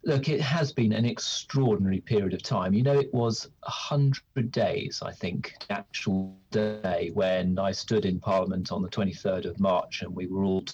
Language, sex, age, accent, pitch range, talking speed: English, male, 40-59, British, 95-130 Hz, 185 wpm